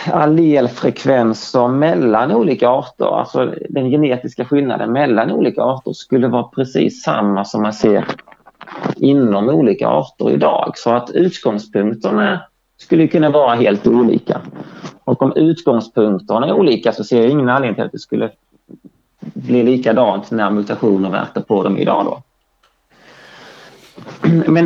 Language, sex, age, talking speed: Swedish, male, 30-49, 130 wpm